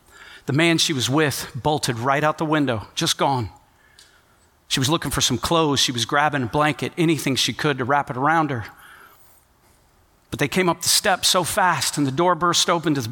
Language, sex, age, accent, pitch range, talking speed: English, male, 40-59, American, 135-175 Hz, 210 wpm